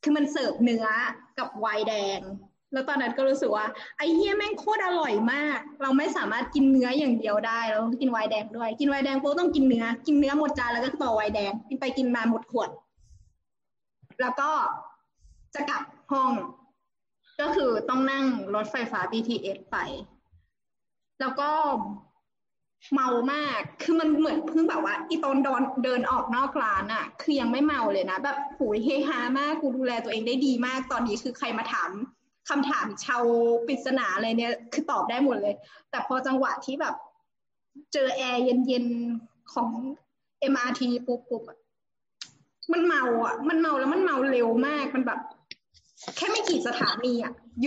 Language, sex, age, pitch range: Thai, female, 20-39, 235-295 Hz